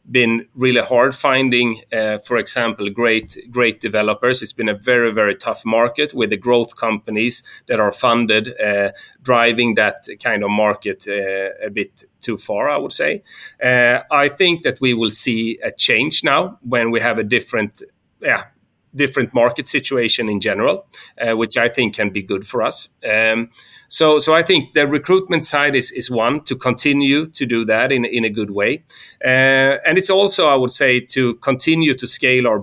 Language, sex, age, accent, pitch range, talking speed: English, male, 30-49, Swedish, 110-130 Hz, 180 wpm